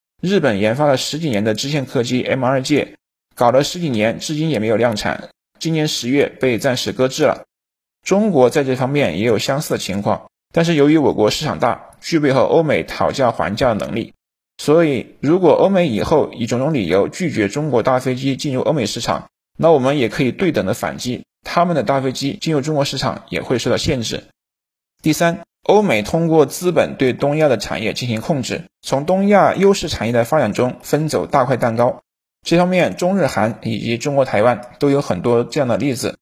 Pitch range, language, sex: 120-160 Hz, Chinese, male